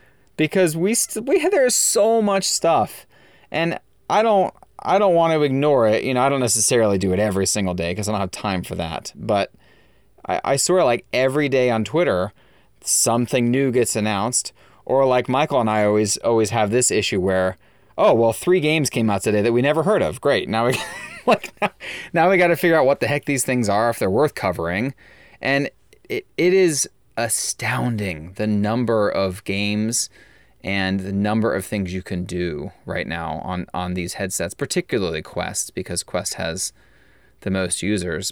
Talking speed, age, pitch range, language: 195 wpm, 30-49, 95-130 Hz, English